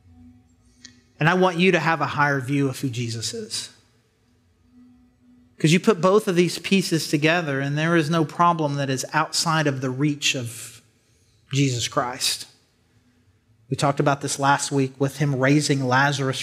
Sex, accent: male, American